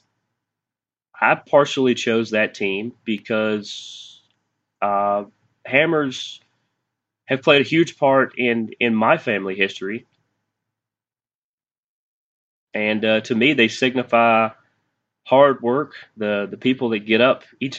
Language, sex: English, male